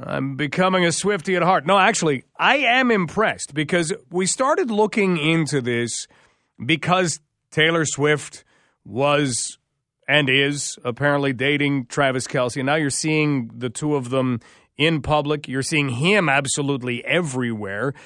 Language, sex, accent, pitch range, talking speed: English, male, American, 130-180 Hz, 135 wpm